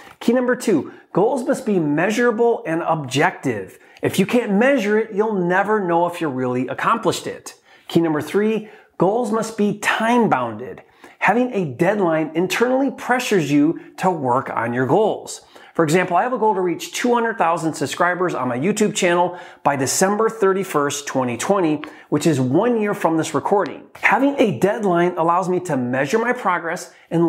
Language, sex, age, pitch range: English, male, 30-49, 155-225 Hz